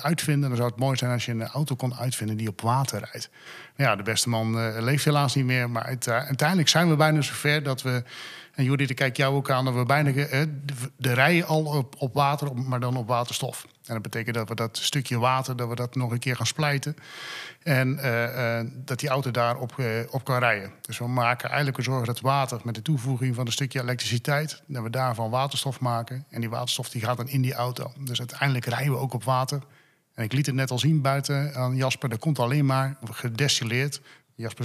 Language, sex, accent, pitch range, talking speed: Dutch, male, Dutch, 120-140 Hz, 240 wpm